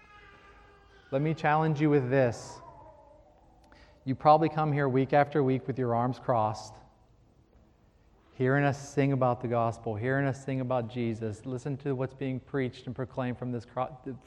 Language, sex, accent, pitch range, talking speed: English, male, American, 115-155 Hz, 160 wpm